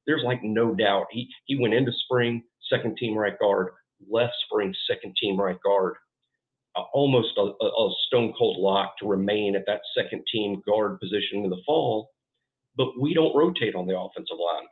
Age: 50-69